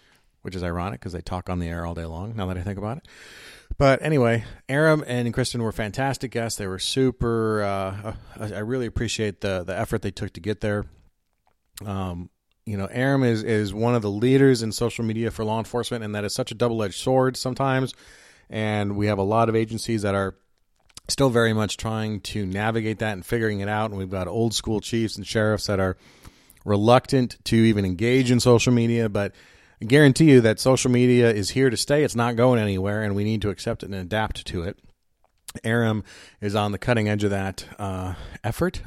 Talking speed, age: 215 wpm, 30-49